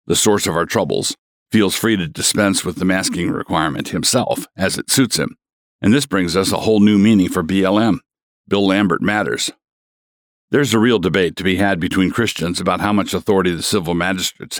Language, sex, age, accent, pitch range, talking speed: English, male, 60-79, American, 90-105 Hz, 195 wpm